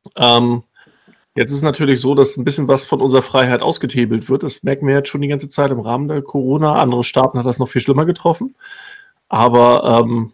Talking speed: 215 wpm